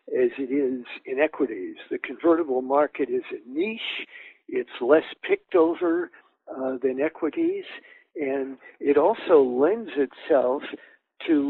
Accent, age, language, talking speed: American, 60-79, English, 125 wpm